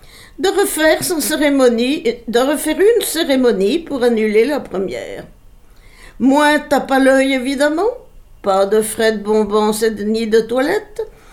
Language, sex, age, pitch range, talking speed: French, female, 60-79, 230-290 Hz, 140 wpm